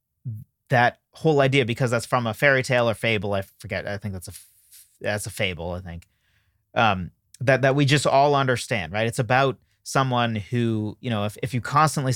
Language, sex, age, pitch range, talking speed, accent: English, male, 30-49, 105-135 Hz, 190 wpm, American